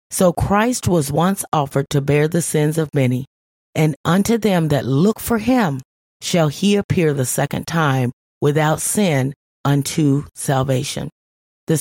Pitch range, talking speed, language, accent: 135-180 Hz, 145 wpm, English, American